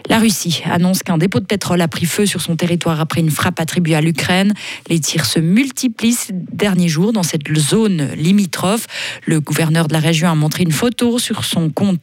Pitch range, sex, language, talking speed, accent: 165-210 Hz, female, French, 210 wpm, French